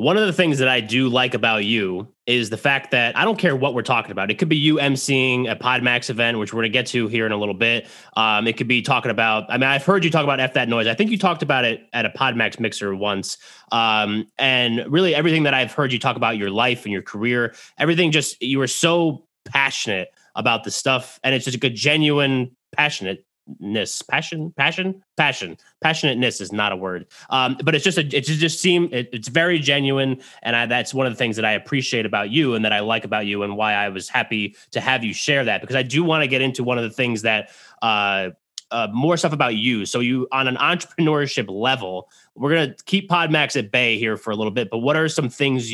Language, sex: English, male